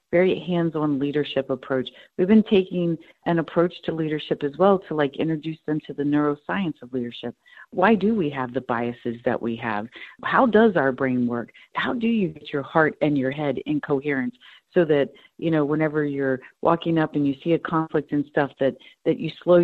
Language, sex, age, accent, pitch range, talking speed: English, female, 50-69, American, 140-175 Hz, 200 wpm